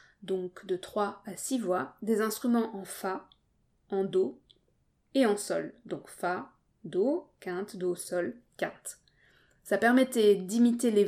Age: 20-39